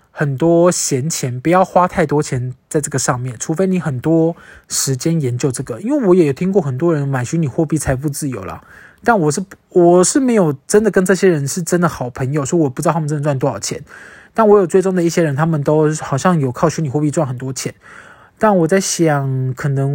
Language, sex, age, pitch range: Chinese, male, 20-39, 145-190 Hz